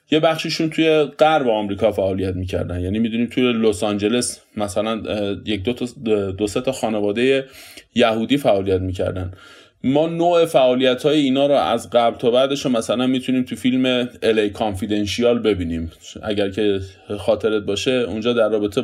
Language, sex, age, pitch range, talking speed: Persian, male, 20-39, 105-140 Hz, 145 wpm